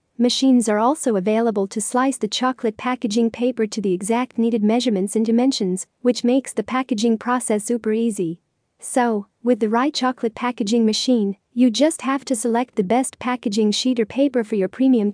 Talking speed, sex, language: 180 wpm, female, English